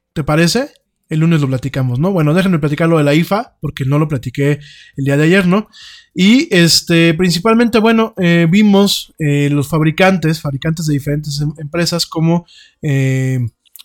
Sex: male